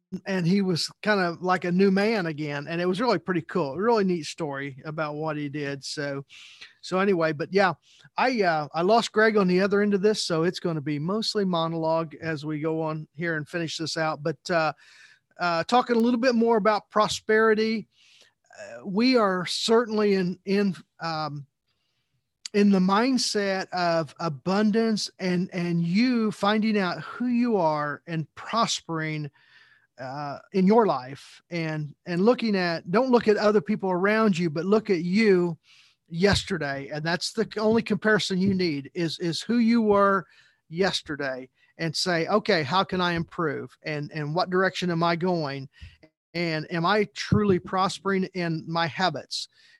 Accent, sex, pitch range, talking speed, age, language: American, male, 160-205 Hz, 170 wpm, 40-59, English